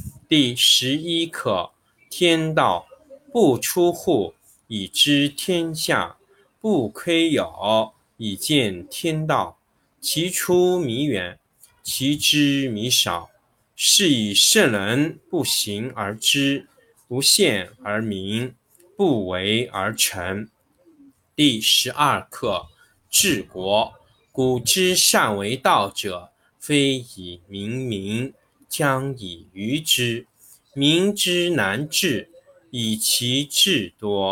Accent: native